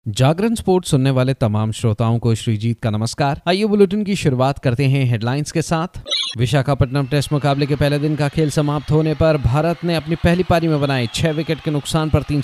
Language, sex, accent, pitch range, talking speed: Hindi, male, native, 120-155 Hz, 205 wpm